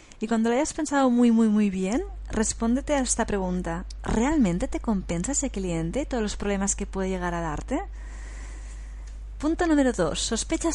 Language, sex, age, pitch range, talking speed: Spanish, female, 30-49, 195-250 Hz, 175 wpm